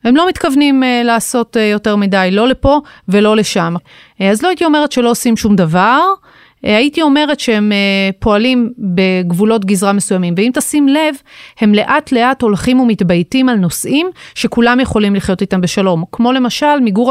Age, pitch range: 30-49, 200-270 Hz